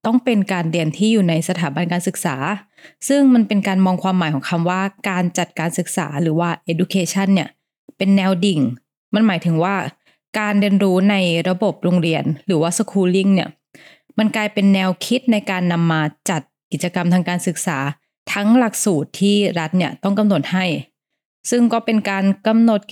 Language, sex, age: Thai, female, 20-39